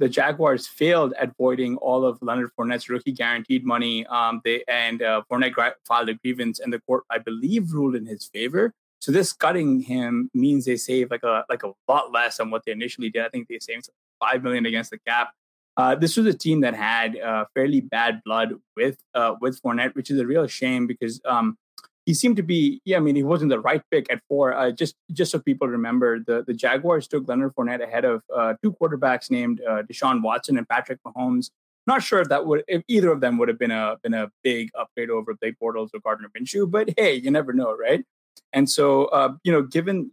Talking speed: 225 wpm